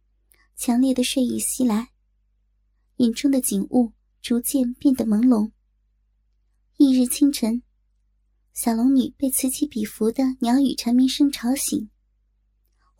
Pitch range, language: 220-275 Hz, Chinese